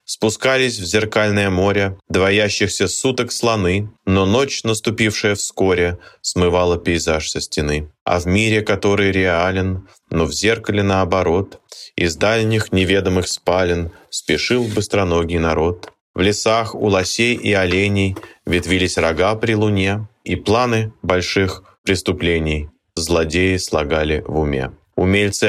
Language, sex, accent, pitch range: Russian, male, native, 85-105 Hz